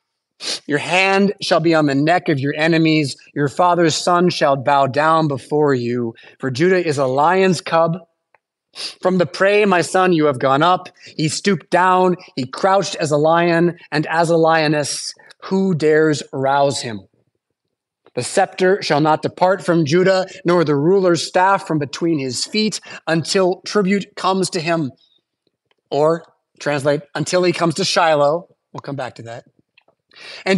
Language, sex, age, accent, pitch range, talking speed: English, male, 30-49, American, 150-190 Hz, 160 wpm